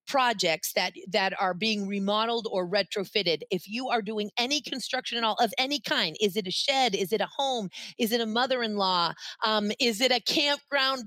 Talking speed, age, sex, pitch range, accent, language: 195 wpm, 40-59, female, 190-250 Hz, American, English